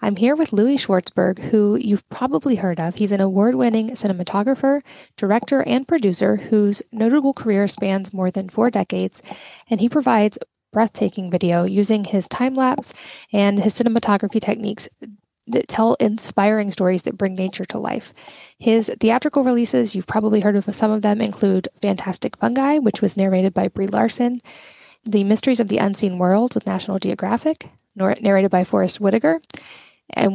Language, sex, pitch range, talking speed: English, female, 195-235 Hz, 160 wpm